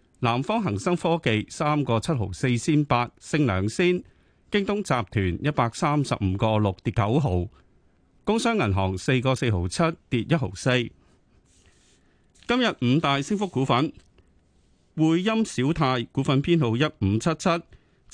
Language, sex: Chinese, male